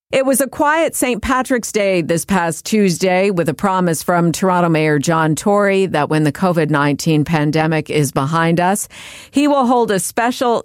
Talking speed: 175 wpm